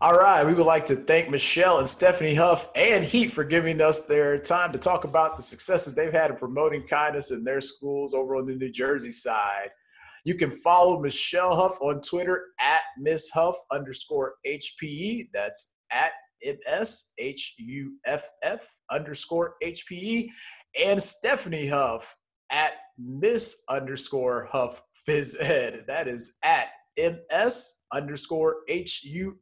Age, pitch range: 30-49, 135-175 Hz